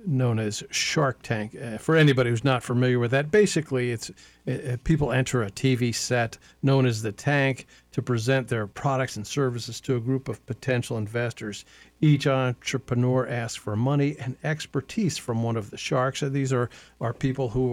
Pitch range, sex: 115-130 Hz, male